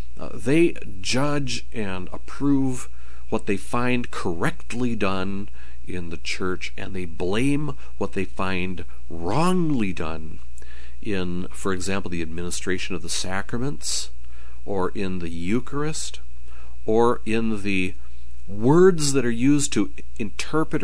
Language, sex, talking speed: English, male, 120 wpm